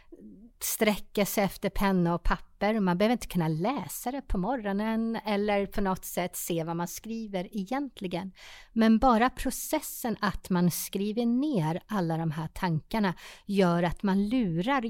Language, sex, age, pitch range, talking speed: Swedish, female, 30-49, 165-205 Hz, 155 wpm